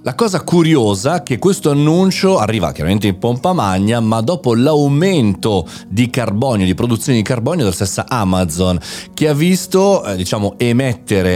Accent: native